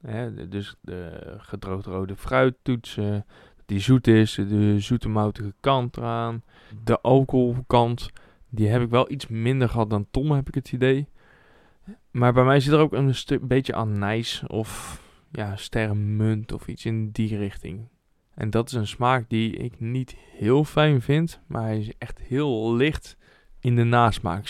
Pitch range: 100-125 Hz